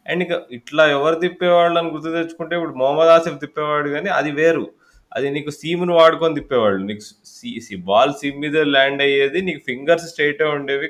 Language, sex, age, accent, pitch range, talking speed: Telugu, male, 20-39, native, 115-160 Hz, 165 wpm